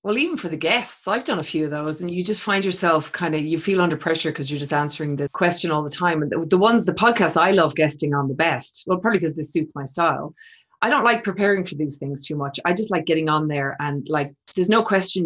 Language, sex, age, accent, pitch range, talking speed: English, female, 30-49, Irish, 155-185 Hz, 270 wpm